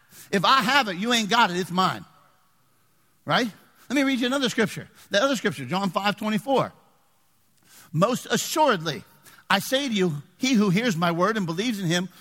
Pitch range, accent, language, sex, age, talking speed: 175-260 Hz, American, English, male, 50-69, 185 wpm